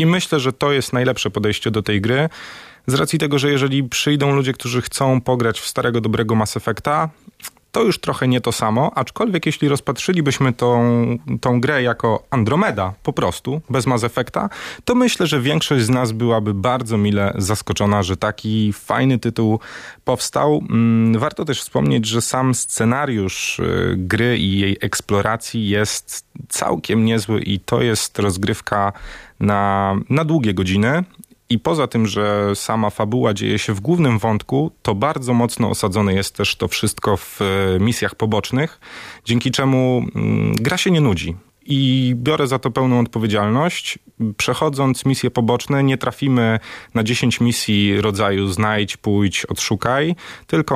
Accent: native